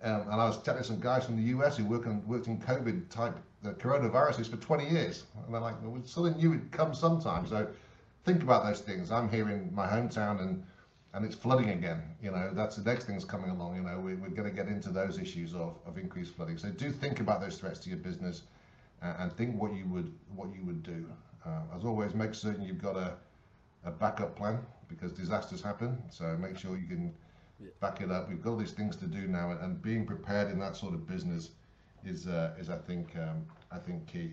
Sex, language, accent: male, English, British